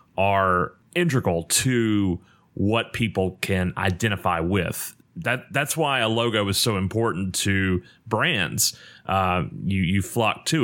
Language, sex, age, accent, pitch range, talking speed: English, male, 30-49, American, 90-100 Hz, 130 wpm